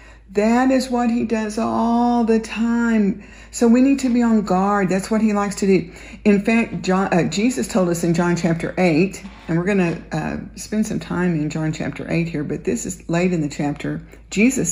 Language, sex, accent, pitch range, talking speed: English, female, American, 170-215 Hz, 210 wpm